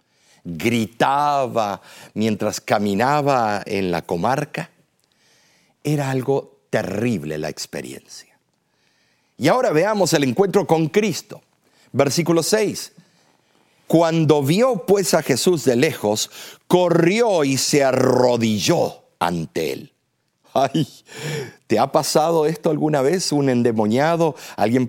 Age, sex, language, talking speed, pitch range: 50-69, male, Spanish, 105 wpm, 115-180 Hz